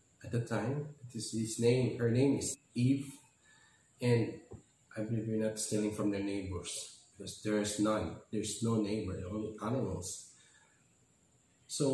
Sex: male